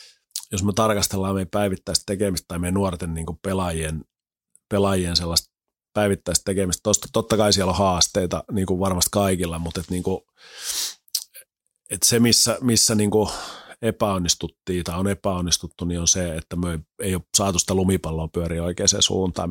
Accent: native